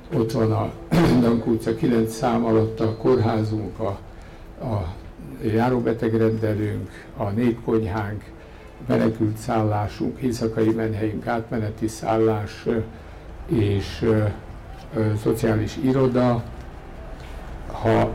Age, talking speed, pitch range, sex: 60-79, 90 wpm, 110-120 Hz, male